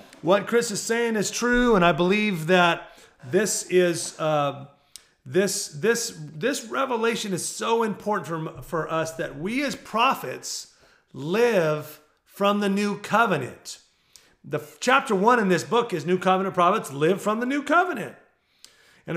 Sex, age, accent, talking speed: male, 40-59, American, 150 wpm